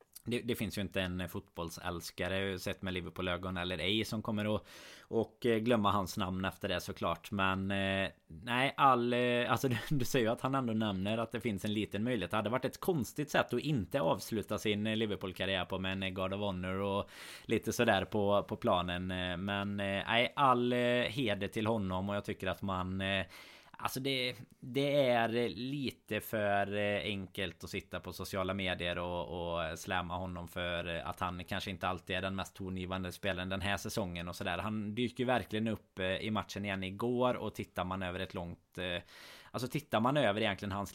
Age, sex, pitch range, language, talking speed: 20-39, male, 95-115 Hz, Swedish, 190 wpm